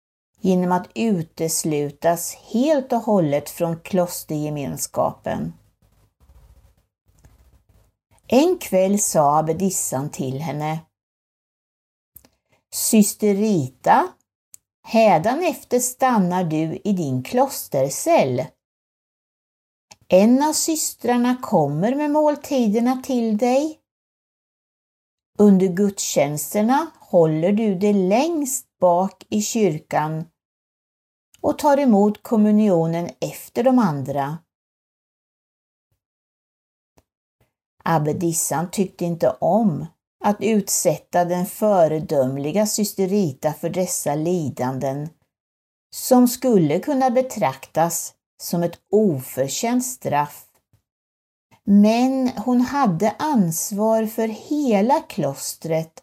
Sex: female